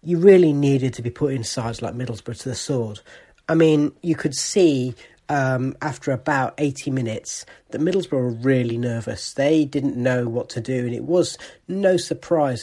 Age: 40-59